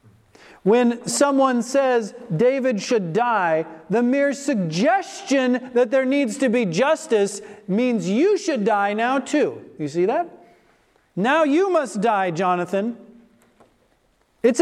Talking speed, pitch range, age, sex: 125 wpm, 170-225 Hz, 40-59, male